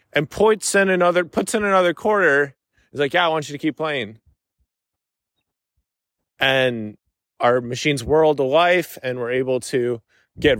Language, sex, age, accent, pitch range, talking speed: English, male, 20-39, American, 115-145 Hz, 140 wpm